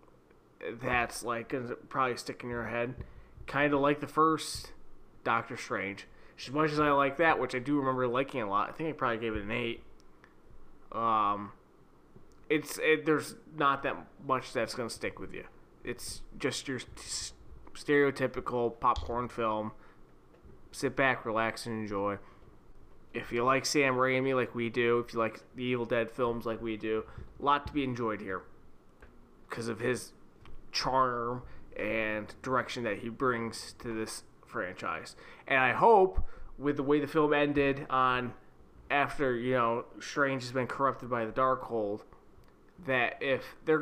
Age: 20-39